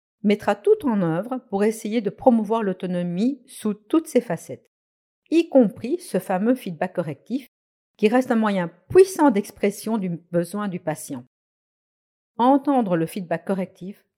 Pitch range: 165-235 Hz